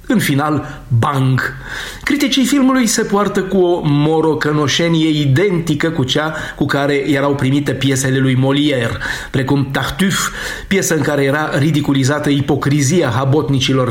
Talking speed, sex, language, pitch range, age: 125 wpm, male, Romanian, 135-175 Hz, 30-49